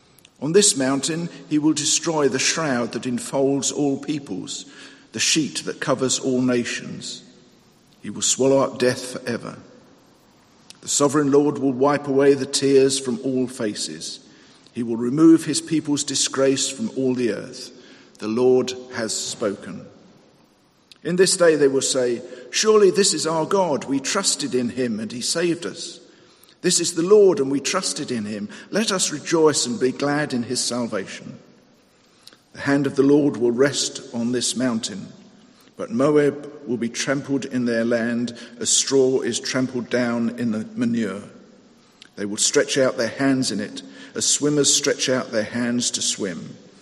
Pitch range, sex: 125-150 Hz, male